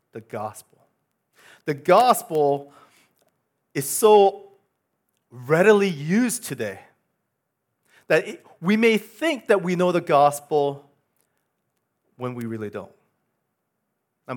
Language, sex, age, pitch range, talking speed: English, male, 40-59, 140-200 Hz, 95 wpm